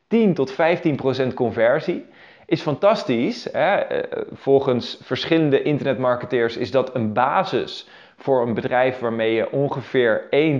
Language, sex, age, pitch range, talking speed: Dutch, male, 20-39, 115-155 Hz, 115 wpm